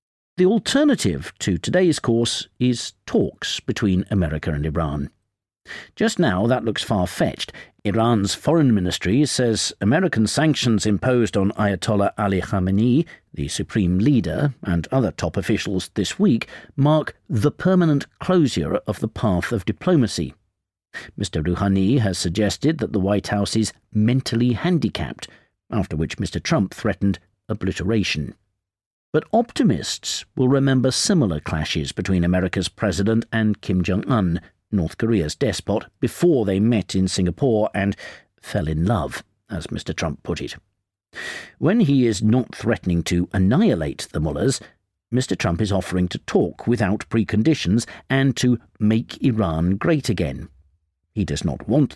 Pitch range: 90-120 Hz